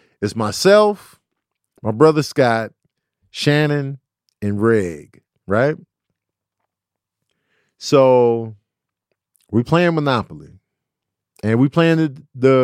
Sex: male